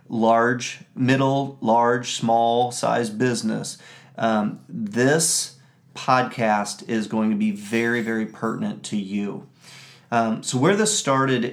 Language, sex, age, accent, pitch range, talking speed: English, male, 40-59, American, 110-130 Hz, 120 wpm